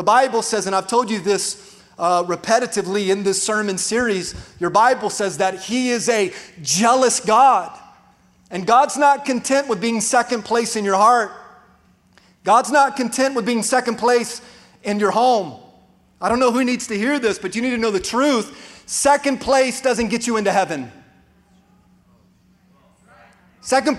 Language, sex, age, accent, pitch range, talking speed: English, male, 30-49, American, 200-255 Hz, 170 wpm